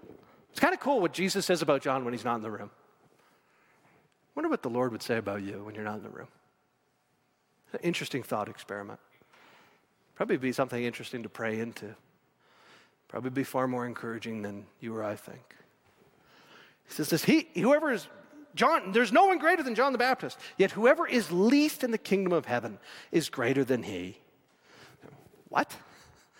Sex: male